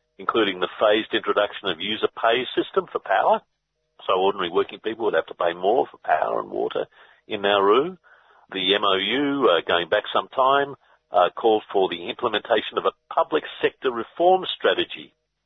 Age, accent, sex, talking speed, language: 50-69, Australian, male, 165 wpm, English